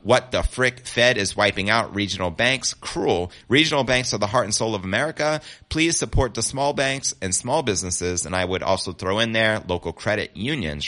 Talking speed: 205 wpm